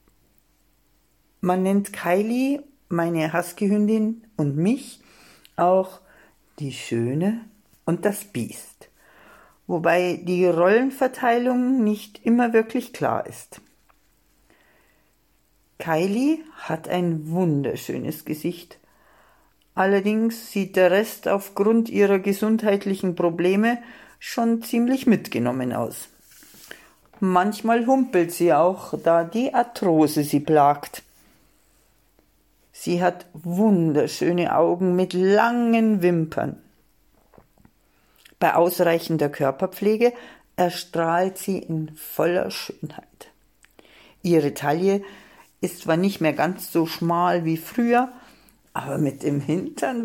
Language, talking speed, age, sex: German, 90 wpm, 50-69, female